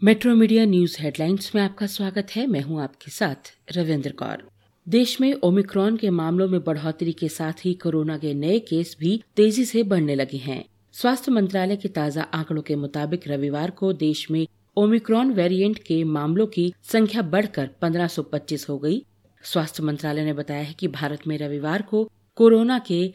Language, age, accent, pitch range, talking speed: Hindi, 40-59, native, 150-200 Hz, 175 wpm